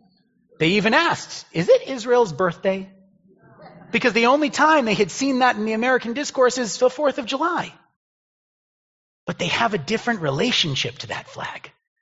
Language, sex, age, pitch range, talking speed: English, male, 30-49, 155-225 Hz, 165 wpm